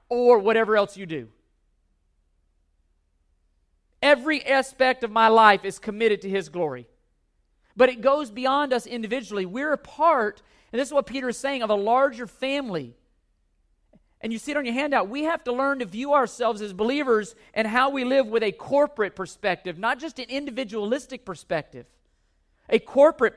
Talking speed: 170 wpm